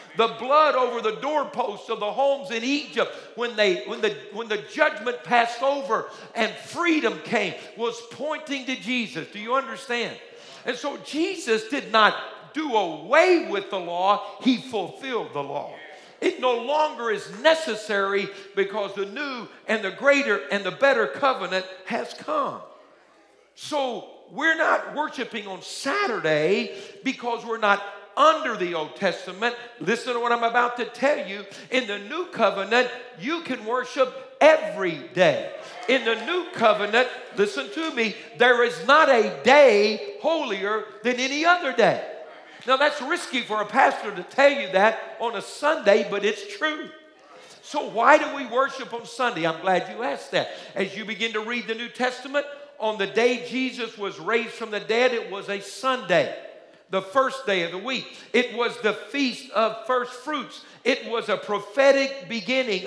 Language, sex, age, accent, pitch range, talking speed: English, male, 50-69, American, 210-275 Hz, 165 wpm